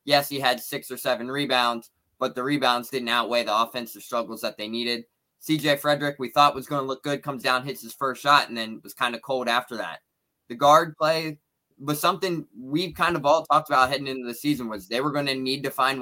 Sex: male